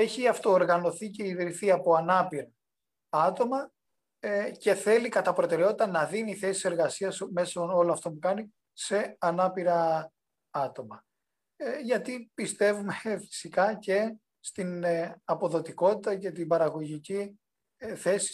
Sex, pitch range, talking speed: male, 160-200 Hz, 110 wpm